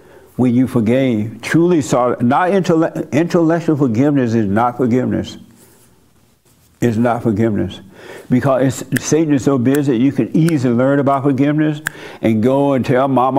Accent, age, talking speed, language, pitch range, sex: American, 60-79, 145 wpm, English, 115-140 Hz, male